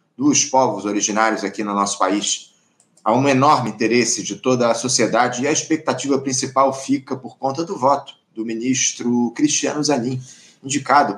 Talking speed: 155 wpm